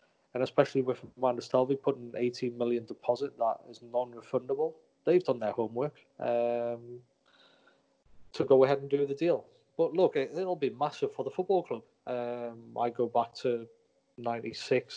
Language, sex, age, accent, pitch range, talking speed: English, male, 20-39, British, 120-140 Hz, 155 wpm